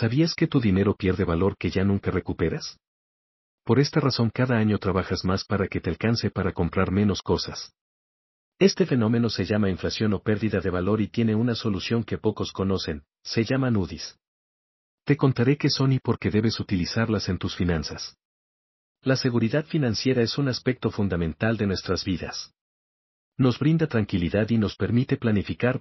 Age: 50-69